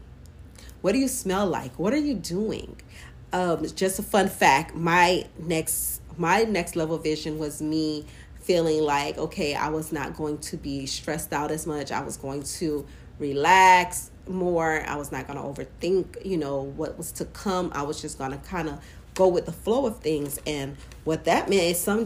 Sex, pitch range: female, 150-185 Hz